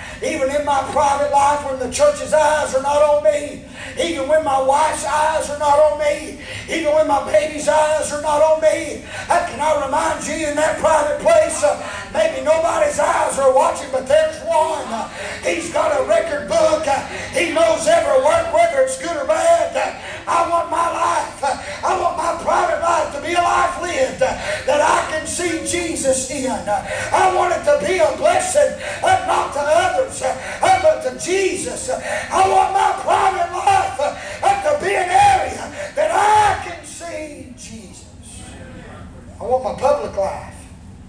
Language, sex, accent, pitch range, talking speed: English, male, American, 210-315 Hz, 165 wpm